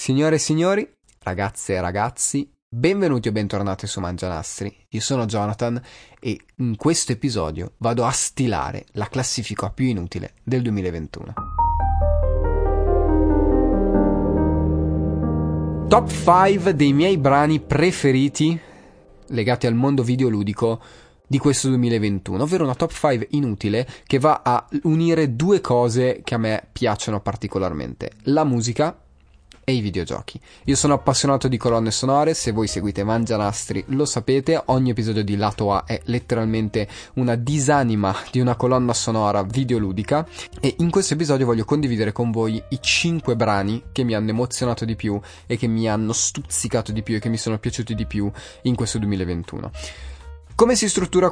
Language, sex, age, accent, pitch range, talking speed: Italian, male, 30-49, native, 100-135 Hz, 145 wpm